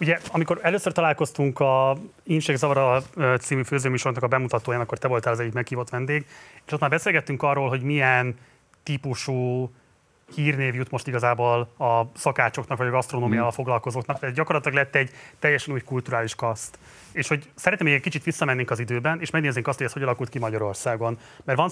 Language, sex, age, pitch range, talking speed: Hungarian, male, 30-49, 125-150 Hz, 175 wpm